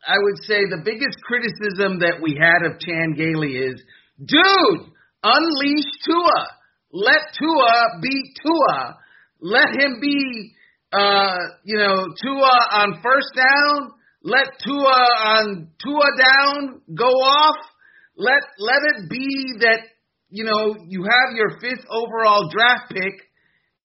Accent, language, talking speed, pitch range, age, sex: American, English, 130 wpm, 185-245 Hz, 40-59, male